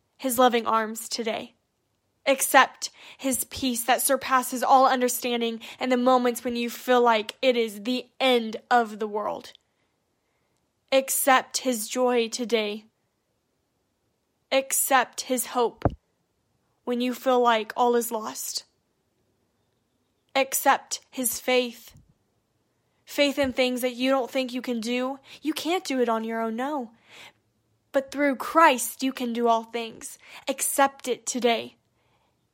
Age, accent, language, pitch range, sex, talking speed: 10-29, American, English, 235-265 Hz, female, 130 wpm